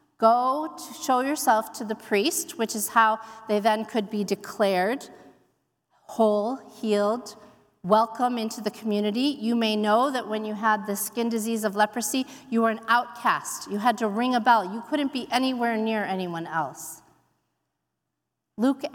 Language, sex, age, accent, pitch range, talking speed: English, female, 40-59, American, 210-275 Hz, 160 wpm